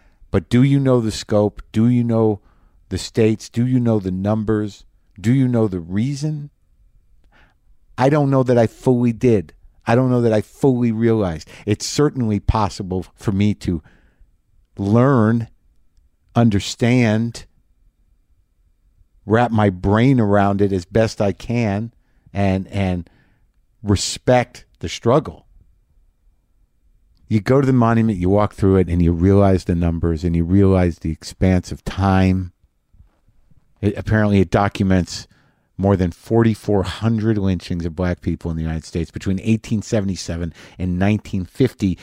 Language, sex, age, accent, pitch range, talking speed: English, male, 50-69, American, 90-115 Hz, 135 wpm